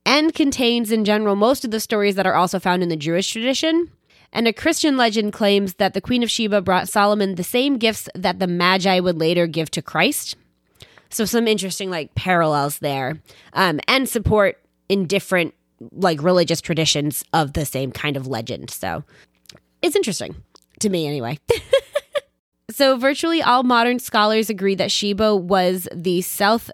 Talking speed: 170 wpm